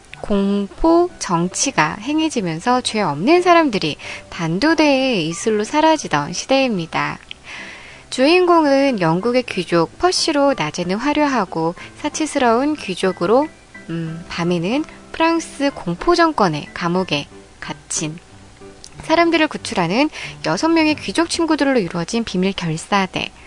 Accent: native